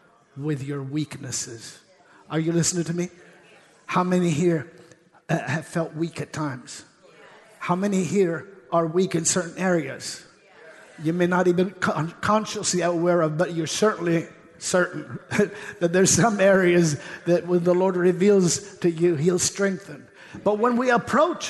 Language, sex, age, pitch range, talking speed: English, male, 50-69, 170-205 Hz, 150 wpm